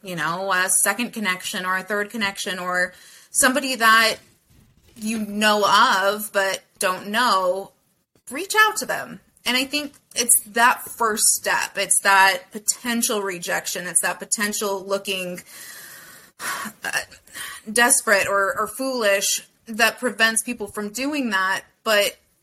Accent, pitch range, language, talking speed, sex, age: American, 195-250 Hz, English, 130 wpm, female, 20-39